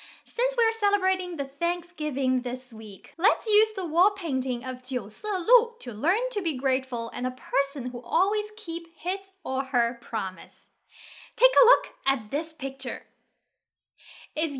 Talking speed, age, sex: 160 wpm, 10-29, female